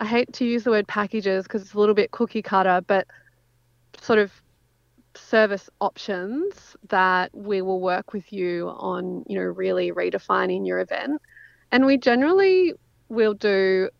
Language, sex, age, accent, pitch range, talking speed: English, female, 30-49, Australian, 185-235 Hz, 160 wpm